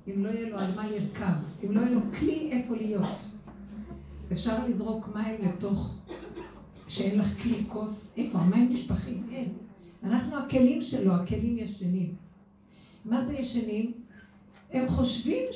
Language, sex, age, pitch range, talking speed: Hebrew, female, 50-69, 180-225 Hz, 140 wpm